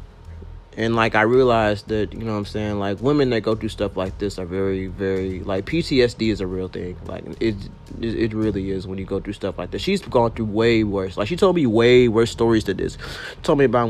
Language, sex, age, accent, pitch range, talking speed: English, male, 30-49, American, 95-125 Hz, 240 wpm